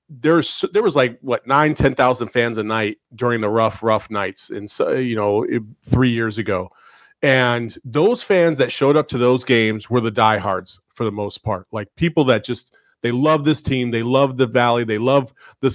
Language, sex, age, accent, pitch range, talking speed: English, male, 30-49, American, 120-165 Hz, 210 wpm